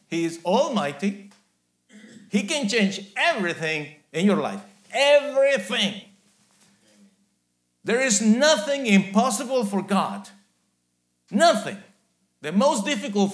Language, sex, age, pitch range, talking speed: English, male, 50-69, 140-215 Hz, 95 wpm